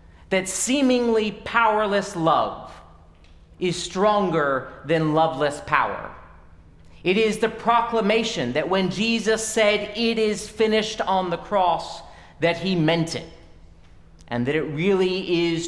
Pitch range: 115-195 Hz